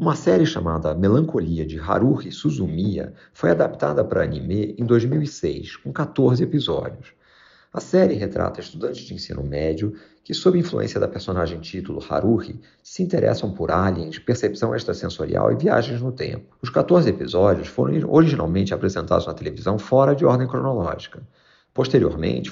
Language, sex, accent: Portuguese, male, Brazilian